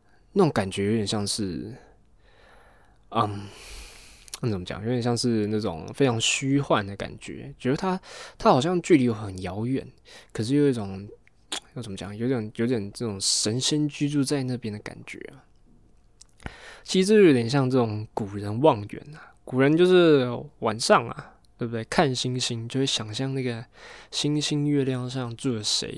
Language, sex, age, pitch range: Chinese, male, 20-39, 105-135 Hz